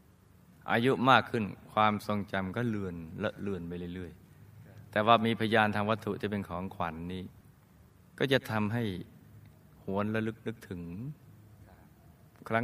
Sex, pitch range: male, 95-120 Hz